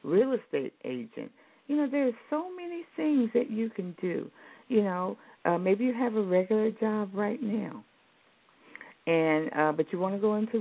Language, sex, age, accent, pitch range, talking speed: English, female, 60-79, American, 205-265 Hz, 180 wpm